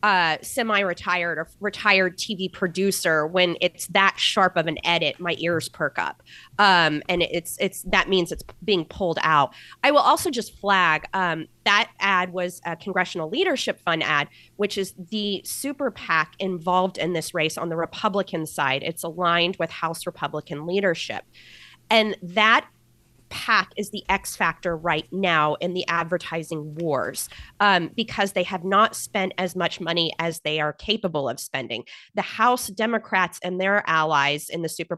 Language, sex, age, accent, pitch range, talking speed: English, female, 30-49, American, 165-205 Hz, 165 wpm